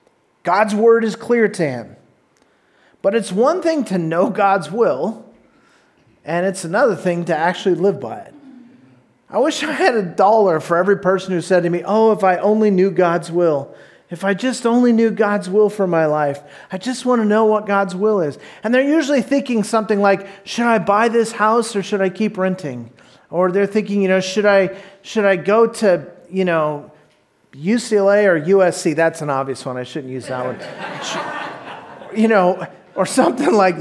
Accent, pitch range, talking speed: American, 185-245 Hz, 190 wpm